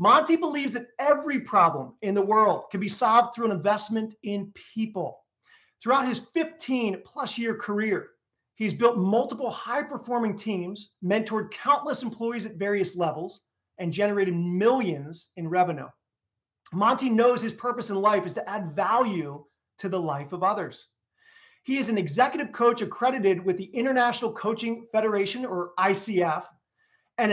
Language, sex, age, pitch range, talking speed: English, male, 40-59, 190-240 Hz, 150 wpm